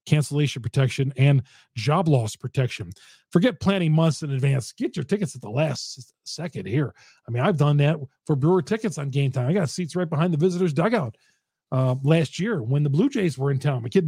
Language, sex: English, male